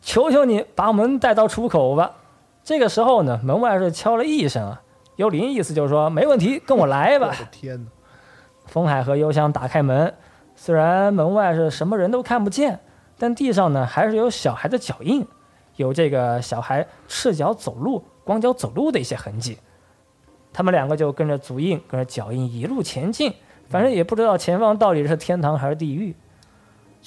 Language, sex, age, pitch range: Chinese, male, 20-39, 130-210 Hz